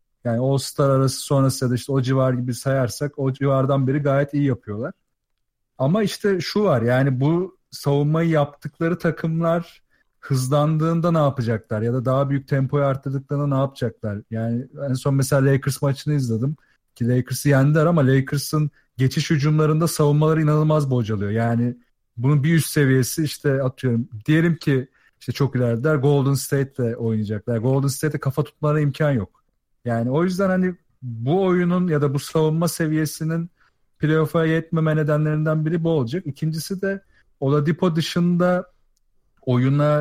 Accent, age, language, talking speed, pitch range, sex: native, 40-59, Turkish, 145 wpm, 130-155 Hz, male